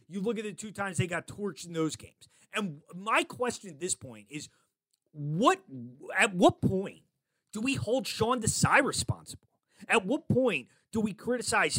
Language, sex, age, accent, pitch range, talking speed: English, male, 30-49, American, 145-215 Hz, 180 wpm